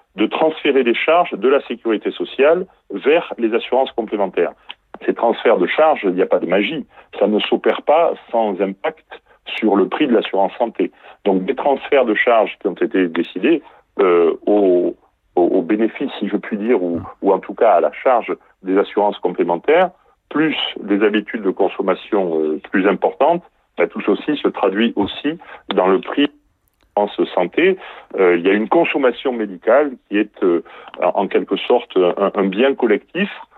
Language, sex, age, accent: French, male, 40-59, French